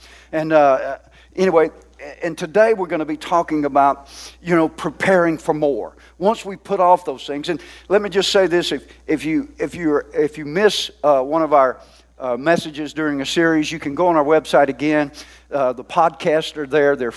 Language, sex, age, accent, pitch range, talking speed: English, male, 50-69, American, 145-185 Hz, 205 wpm